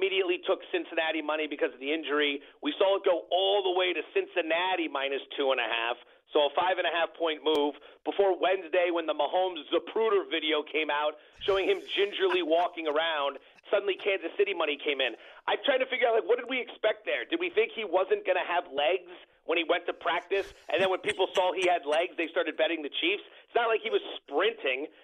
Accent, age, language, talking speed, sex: American, 40-59, English, 225 wpm, male